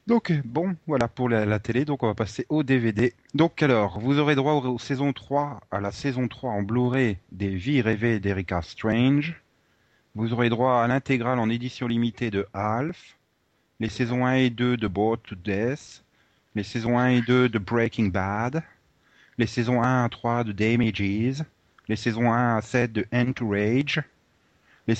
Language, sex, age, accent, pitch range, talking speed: French, male, 30-49, French, 110-130 Hz, 185 wpm